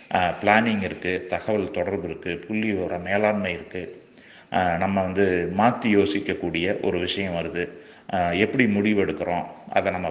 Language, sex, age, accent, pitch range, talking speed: Tamil, male, 30-49, native, 90-110 Hz, 120 wpm